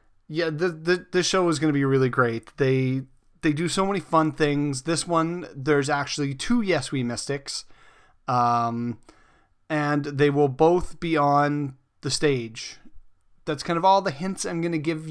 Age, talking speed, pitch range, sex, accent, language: 30-49, 180 wpm, 140-170 Hz, male, American, English